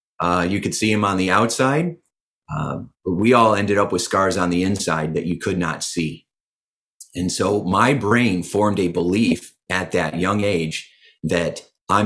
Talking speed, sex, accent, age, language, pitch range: 185 wpm, male, American, 30-49, English, 90-110 Hz